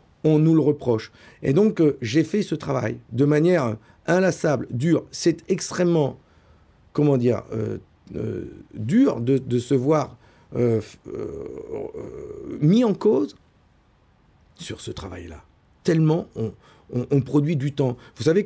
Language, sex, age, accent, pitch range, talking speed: French, male, 50-69, French, 120-155 Hz, 140 wpm